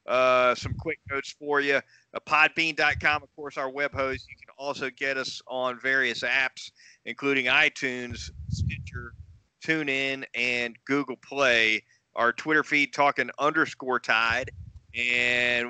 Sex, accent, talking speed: male, American, 135 wpm